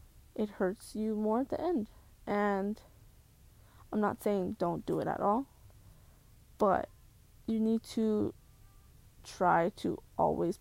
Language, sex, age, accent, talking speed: English, female, 20-39, American, 130 wpm